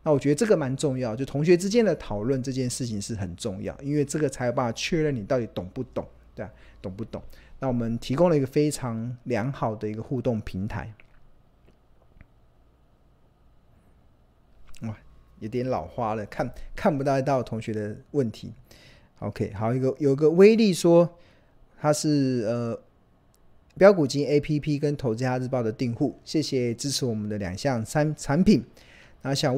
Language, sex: Chinese, male